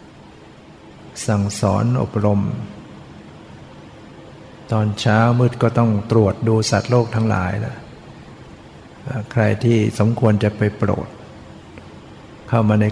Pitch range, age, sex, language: 105-115 Hz, 60-79, male, Thai